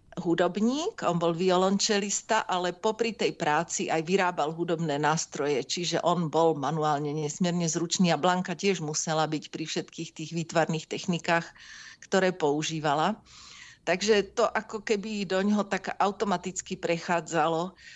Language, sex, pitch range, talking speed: Slovak, female, 160-195 Hz, 125 wpm